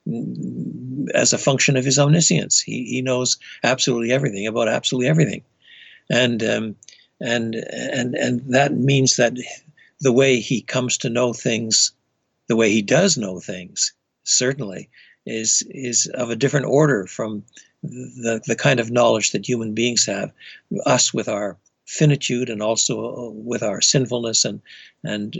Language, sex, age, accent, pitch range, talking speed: English, male, 60-79, American, 115-140 Hz, 150 wpm